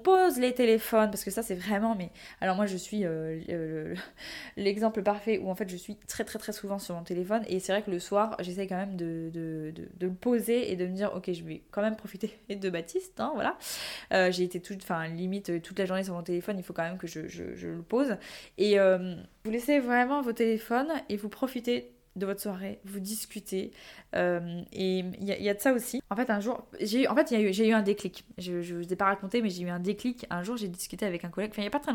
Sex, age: female, 20-39